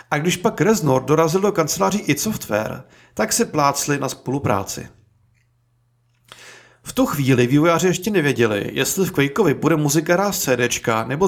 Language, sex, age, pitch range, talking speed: Czech, male, 40-59, 125-180 Hz, 150 wpm